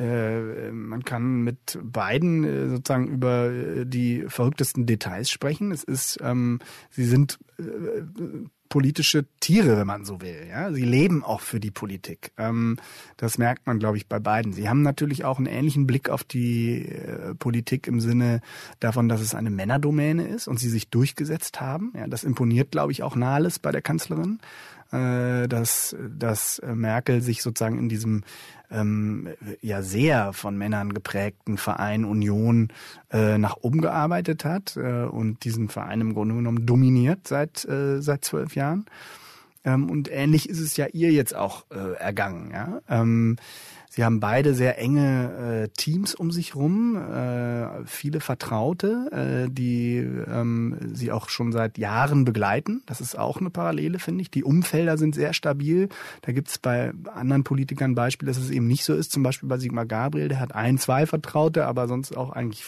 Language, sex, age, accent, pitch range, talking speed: German, male, 30-49, German, 115-145 Hz, 165 wpm